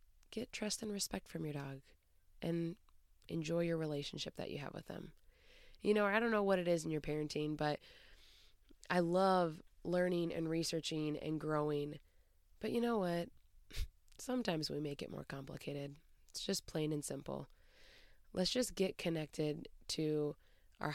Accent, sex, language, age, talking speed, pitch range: American, female, English, 20-39, 160 wpm, 150-190 Hz